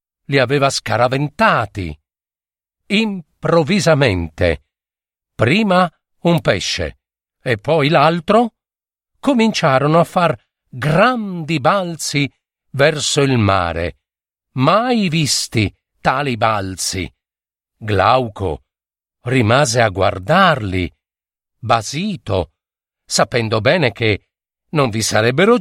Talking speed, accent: 75 wpm, native